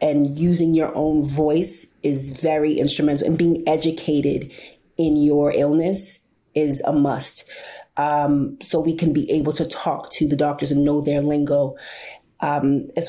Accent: American